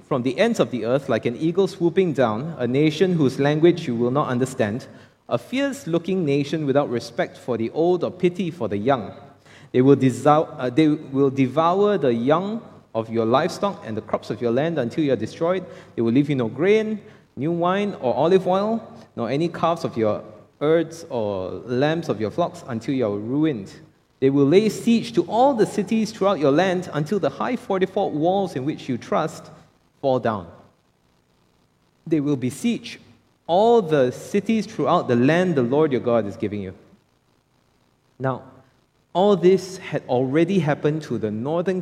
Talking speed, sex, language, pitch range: 180 wpm, male, English, 125-175 Hz